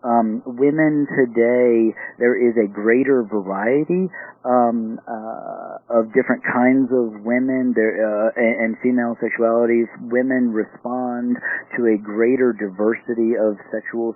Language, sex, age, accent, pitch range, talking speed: English, male, 40-59, American, 110-130 Hz, 125 wpm